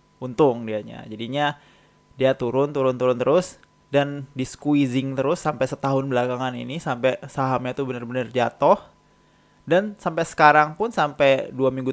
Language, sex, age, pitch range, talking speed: Indonesian, male, 20-39, 125-150 Hz, 135 wpm